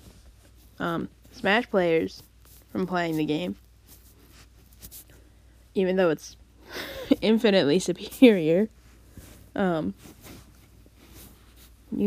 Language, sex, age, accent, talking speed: English, female, 10-29, American, 70 wpm